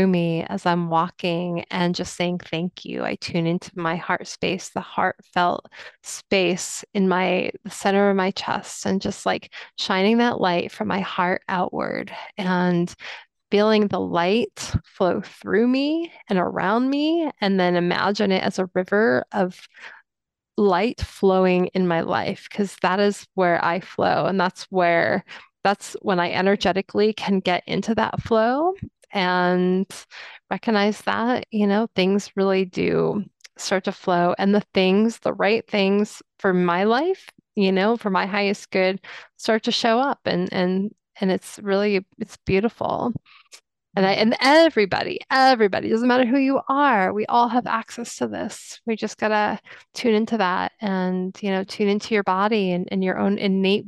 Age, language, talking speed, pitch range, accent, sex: 20-39, English, 165 wpm, 185-215 Hz, American, female